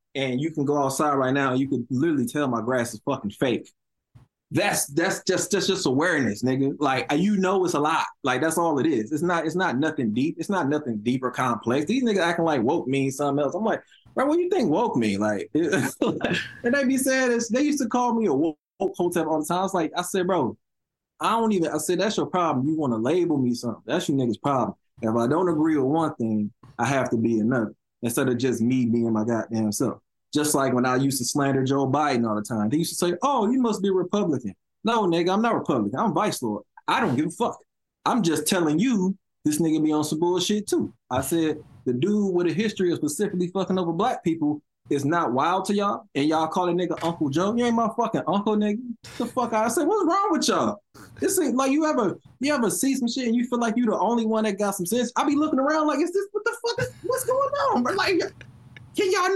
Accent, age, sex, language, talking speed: American, 20-39, male, English, 255 wpm